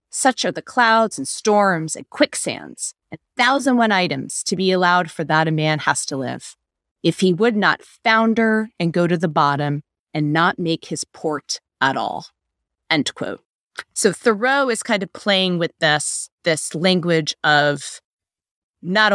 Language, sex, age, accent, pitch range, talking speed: English, female, 30-49, American, 155-220 Hz, 165 wpm